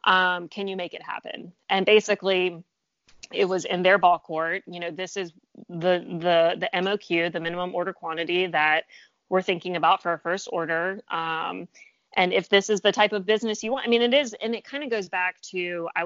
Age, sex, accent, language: 30-49, female, American, English